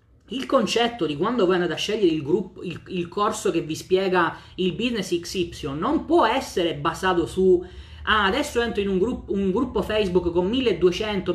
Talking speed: 185 wpm